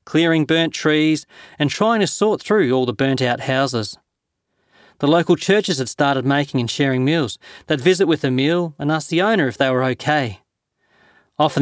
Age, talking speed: 30-49, 180 wpm